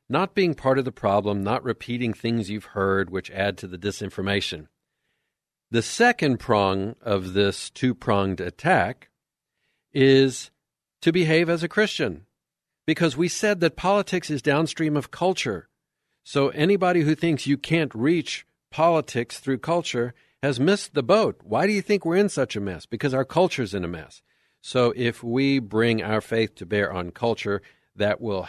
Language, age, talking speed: English, 50-69, 165 wpm